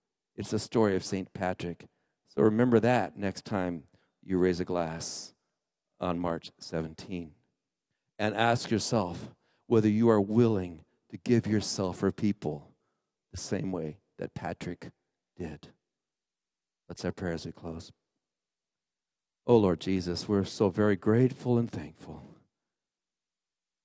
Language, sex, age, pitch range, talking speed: English, male, 50-69, 90-115 Hz, 130 wpm